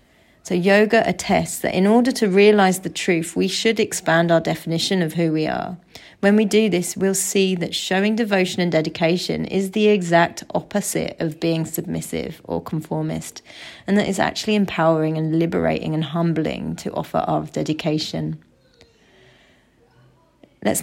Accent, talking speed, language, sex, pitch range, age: British, 155 wpm, English, female, 165-205 Hz, 30-49